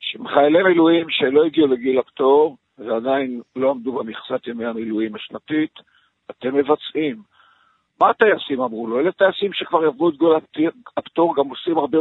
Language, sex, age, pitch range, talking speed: English, male, 50-69, 150-205 Hz, 140 wpm